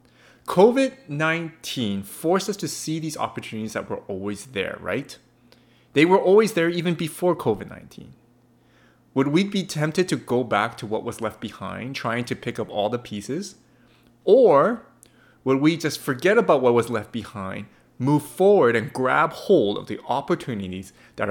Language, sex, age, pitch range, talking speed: English, male, 30-49, 115-155 Hz, 160 wpm